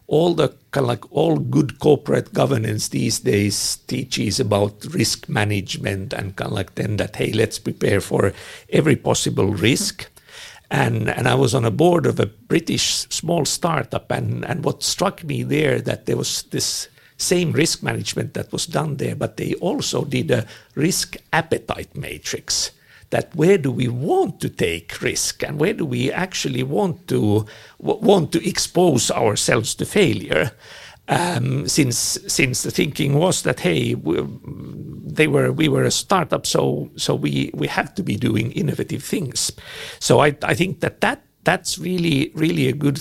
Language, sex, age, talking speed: Finnish, male, 60-79, 170 wpm